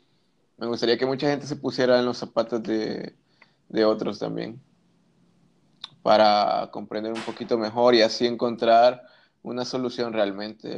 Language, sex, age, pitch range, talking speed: English, male, 20-39, 105-120 Hz, 140 wpm